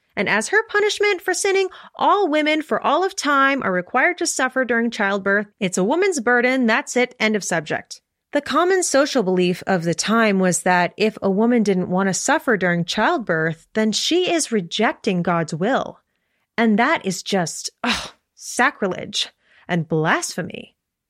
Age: 30-49